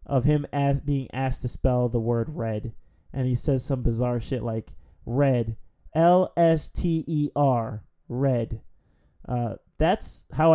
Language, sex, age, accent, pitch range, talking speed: English, male, 20-39, American, 115-145 Hz, 125 wpm